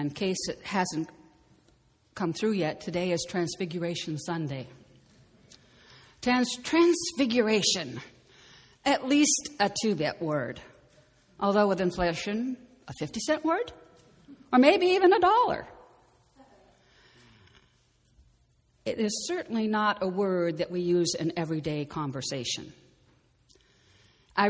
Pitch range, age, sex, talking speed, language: 155-245 Hz, 60-79, female, 100 wpm, English